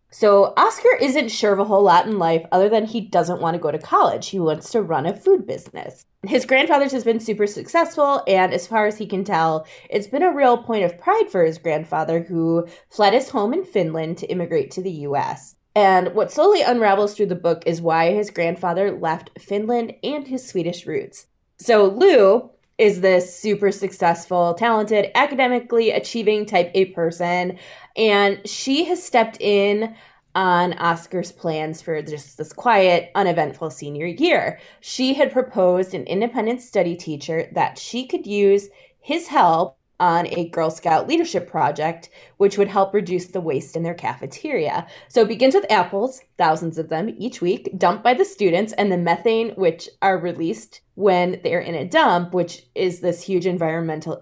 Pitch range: 170-225 Hz